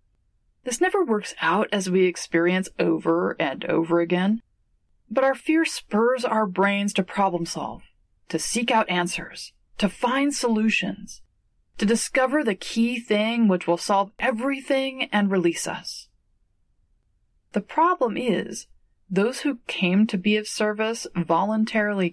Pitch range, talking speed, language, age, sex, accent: 170-230 Hz, 135 wpm, English, 30-49, female, American